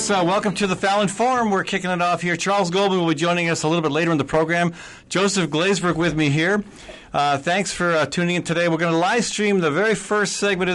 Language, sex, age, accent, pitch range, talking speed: English, male, 50-69, American, 145-185 Hz, 255 wpm